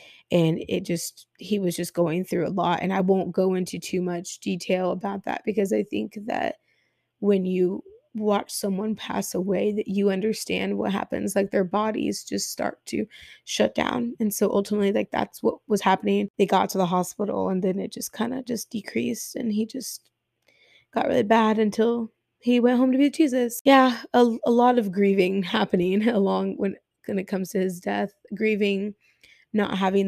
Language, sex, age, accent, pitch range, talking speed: English, female, 20-39, American, 185-220 Hz, 190 wpm